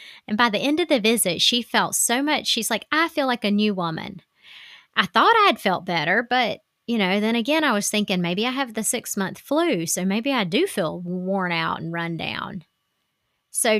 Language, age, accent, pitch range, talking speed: English, 30-49, American, 180-230 Hz, 220 wpm